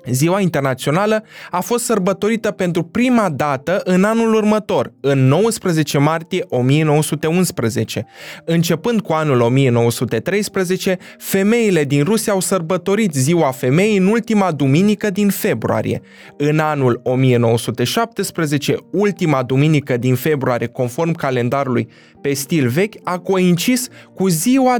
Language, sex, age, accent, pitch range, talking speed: Romanian, male, 20-39, native, 135-200 Hz, 115 wpm